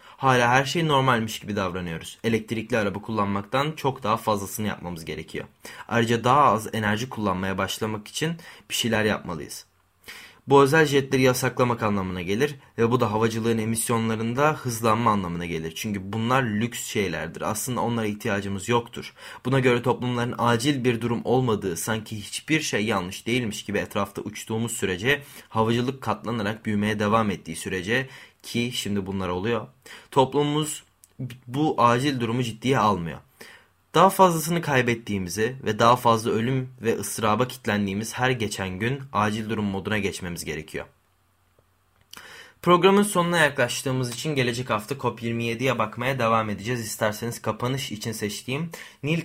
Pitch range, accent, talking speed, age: 105-130 Hz, native, 135 wpm, 30-49